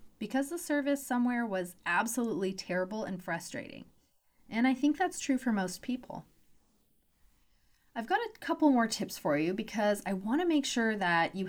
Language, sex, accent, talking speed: English, female, American, 170 wpm